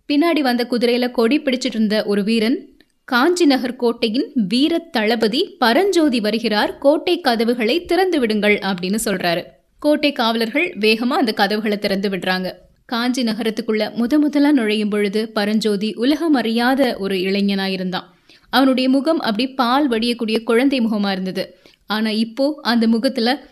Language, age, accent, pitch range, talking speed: Tamil, 20-39, native, 215-275 Hz, 125 wpm